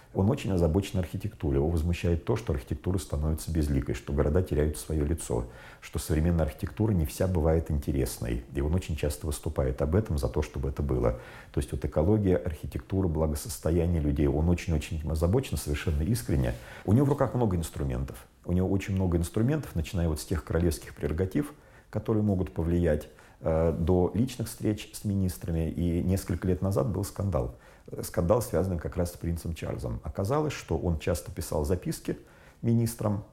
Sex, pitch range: male, 75-95 Hz